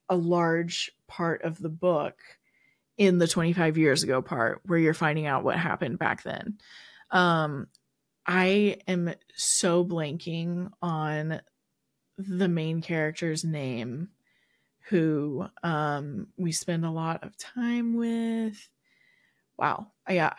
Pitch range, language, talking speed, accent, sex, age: 160-190 Hz, English, 120 wpm, American, female, 20-39